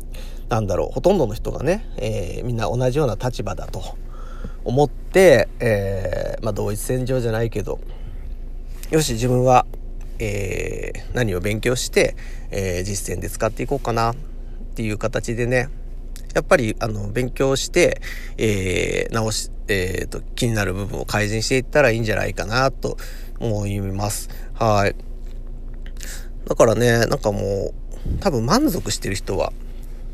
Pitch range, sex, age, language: 105-130 Hz, male, 40-59, Japanese